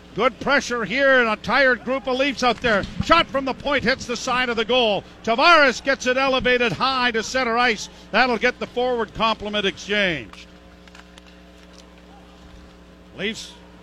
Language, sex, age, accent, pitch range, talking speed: English, male, 50-69, American, 200-260 Hz, 155 wpm